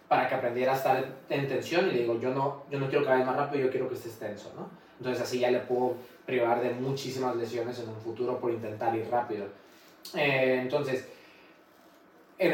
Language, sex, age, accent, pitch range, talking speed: Spanish, male, 20-39, Mexican, 125-145 Hz, 210 wpm